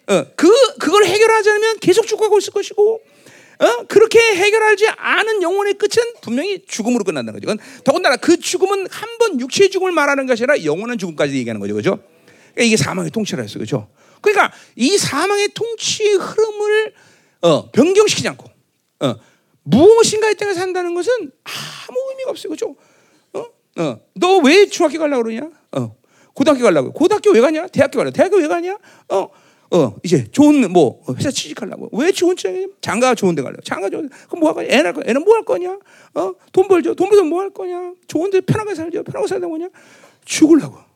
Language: Korean